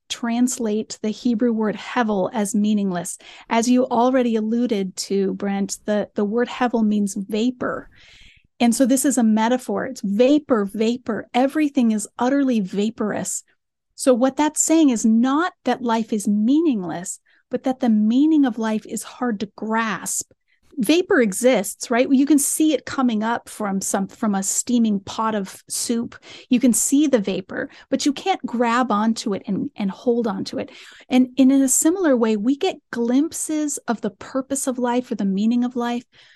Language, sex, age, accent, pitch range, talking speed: English, female, 30-49, American, 220-270 Hz, 170 wpm